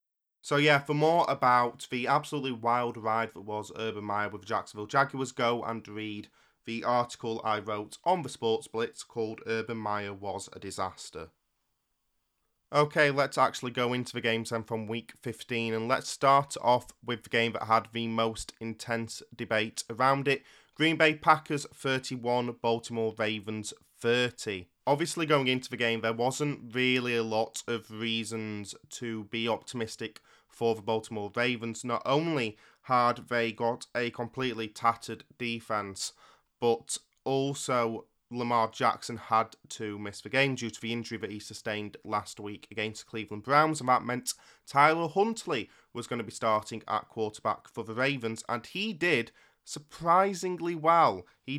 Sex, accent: male, British